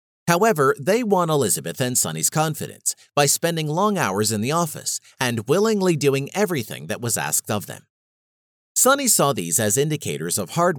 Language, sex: English, male